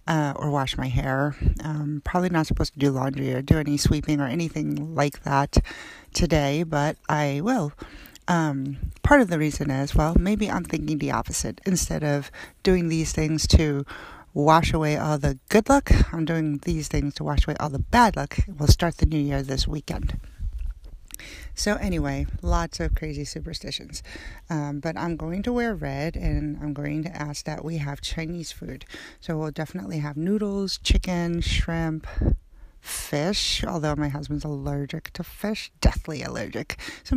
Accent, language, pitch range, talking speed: American, English, 140-165 Hz, 170 wpm